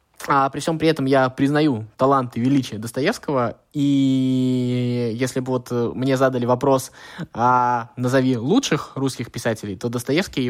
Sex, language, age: male, Russian, 20-39